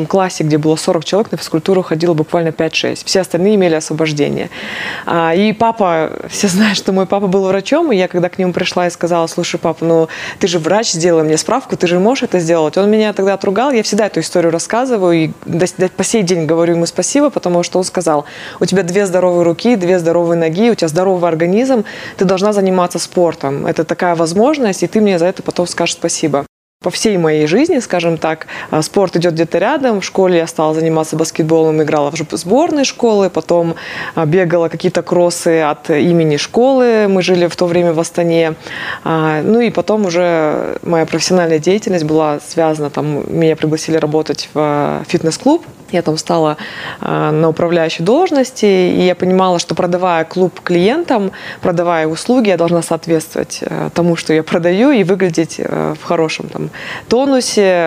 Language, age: Russian, 20-39